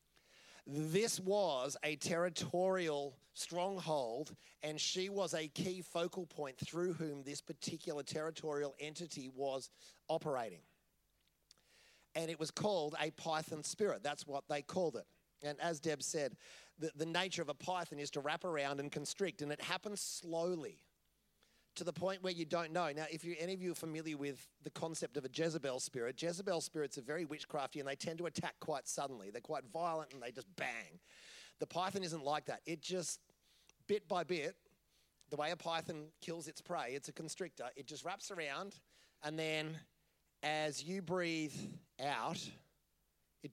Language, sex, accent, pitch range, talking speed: English, male, Australian, 145-175 Hz, 170 wpm